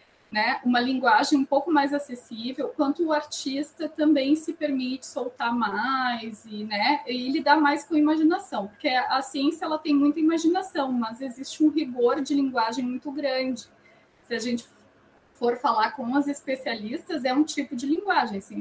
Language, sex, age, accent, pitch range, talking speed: Portuguese, female, 20-39, Brazilian, 230-295 Hz, 170 wpm